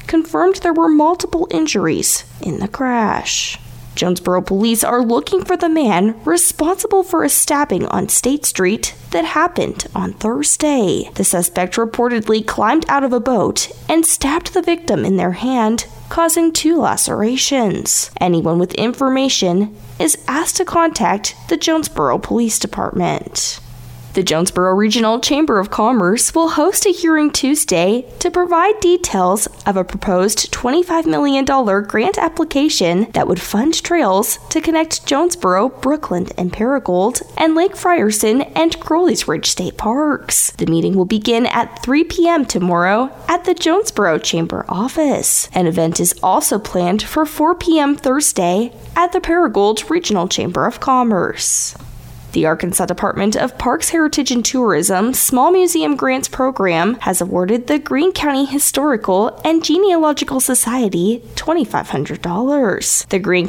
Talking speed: 140 wpm